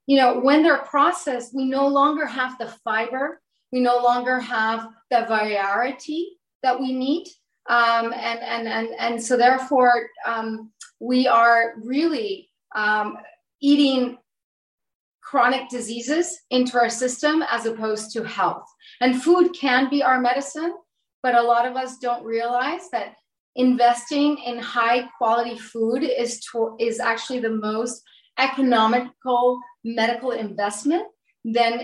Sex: female